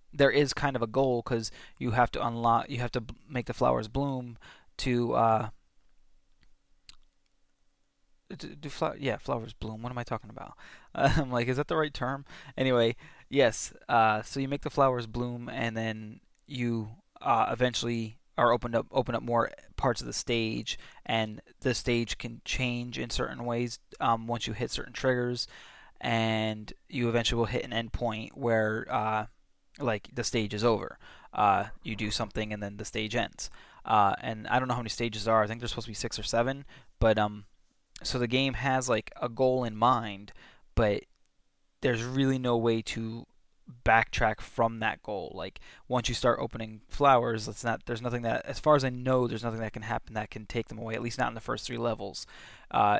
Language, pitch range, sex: English, 110-125 Hz, male